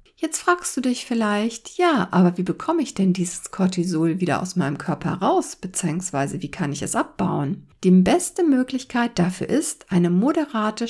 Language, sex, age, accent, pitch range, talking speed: German, female, 60-79, German, 180-265 Hz, 170 wpm